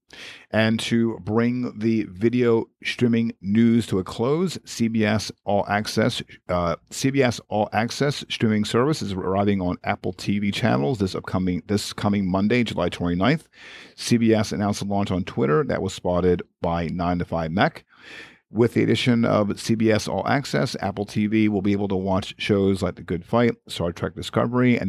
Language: English